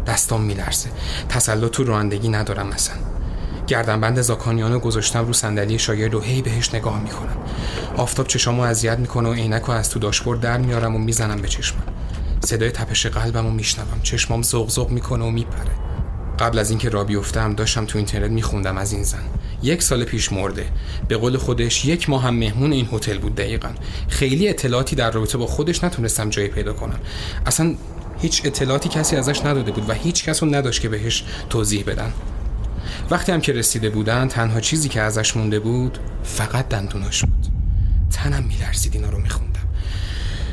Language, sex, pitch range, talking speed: Persian, male, 100-120 Hz, 170 wpm